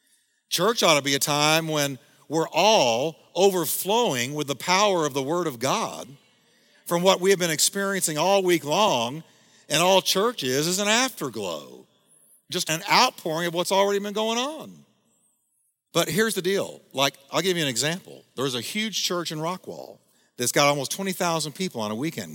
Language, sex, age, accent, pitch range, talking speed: English, male, 50-69, American, 130-180 Hz, 180 wpm